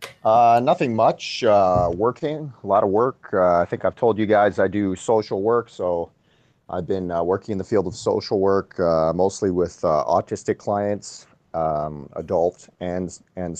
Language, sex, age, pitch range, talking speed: English, male, 30-49, 80-100 Hz, 180 wpm